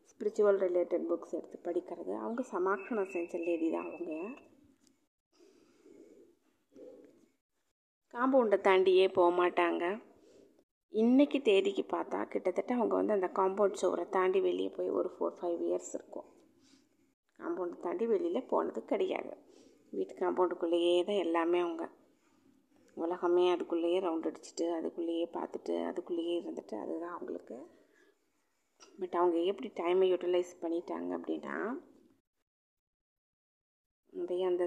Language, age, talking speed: Tamil, 20-39, 105 wpm